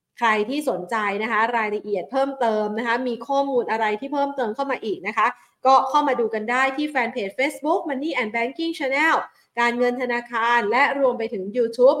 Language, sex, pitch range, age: Thai, female, 210-265 Hz, 20-39